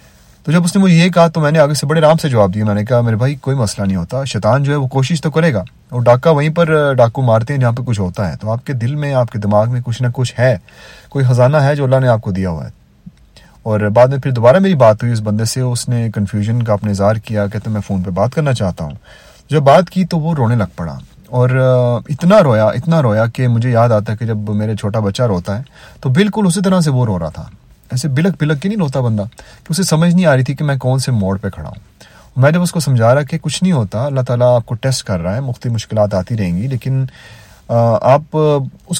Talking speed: 275 wpm